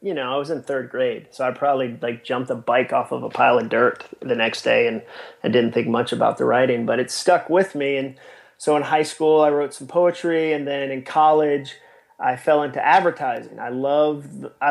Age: 30-49